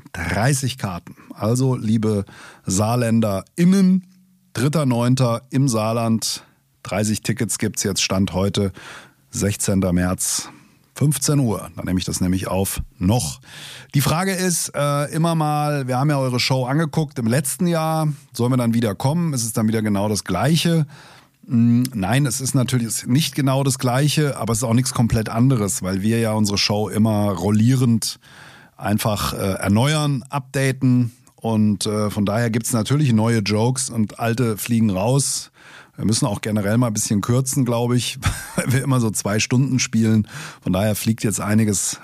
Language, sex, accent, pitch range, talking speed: German, male, German, 105-135 Hz, 165 wpm